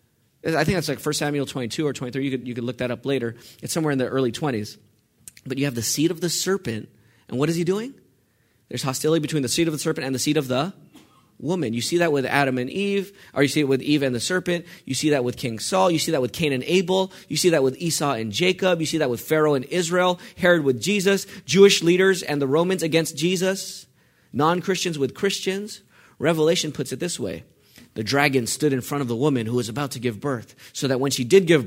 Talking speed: 250 wpm